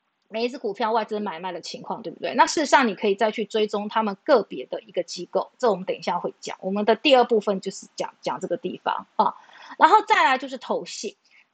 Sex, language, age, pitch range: female, Chinese, 30-49, 210-280 Hz